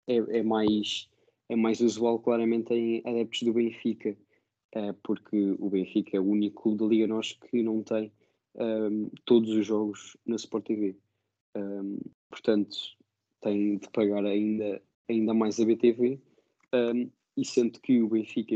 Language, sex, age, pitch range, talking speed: Portuguese, male, 20-39, 105-115 Hz, 150 wpm